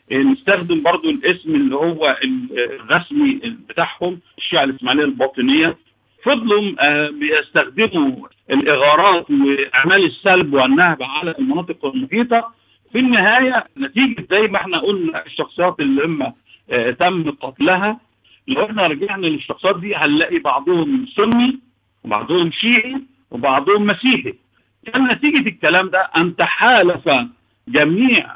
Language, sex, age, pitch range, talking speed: Arabic, male, 50-69, 160-260 Hz, 105 wpm